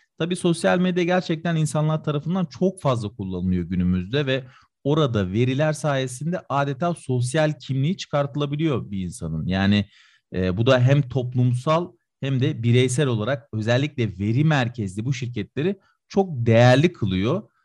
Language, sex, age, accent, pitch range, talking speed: Turkish, male, 40-59, native, 120-165 Hz, 130 wpm